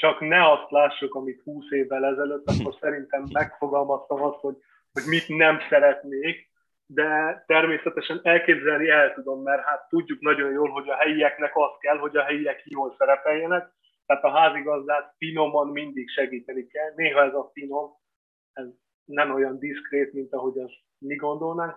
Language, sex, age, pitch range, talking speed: Hungarian, male, 30-49, 135-155 Hz, 155 wpm